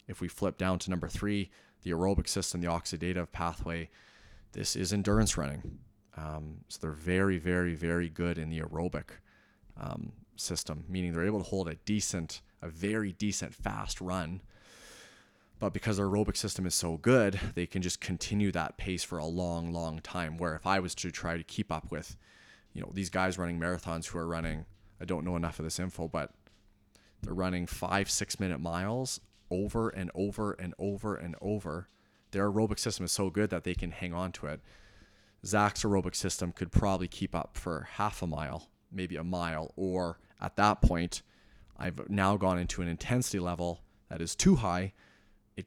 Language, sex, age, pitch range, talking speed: English, male, 30-49, 85-100 Hz, 190 wpm